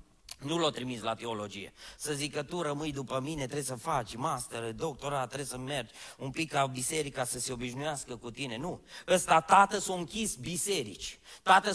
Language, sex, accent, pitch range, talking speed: Romanian, male, native, 160-225 Hz, 185 wpm